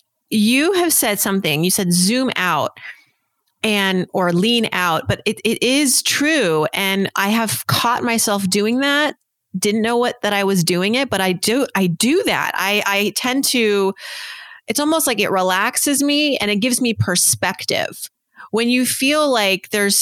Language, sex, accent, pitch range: English, female, American, 180-235 Hz